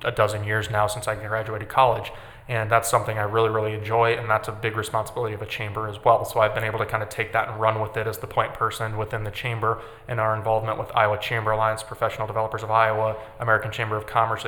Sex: male